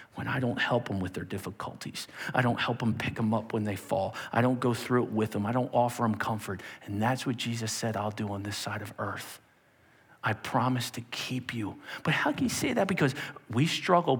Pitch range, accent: 115-175 Hz, American